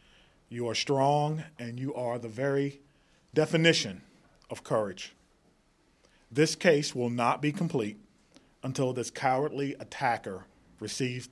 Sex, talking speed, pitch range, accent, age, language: male, 115 wpm, 115-135 Hz, American, 40-59, English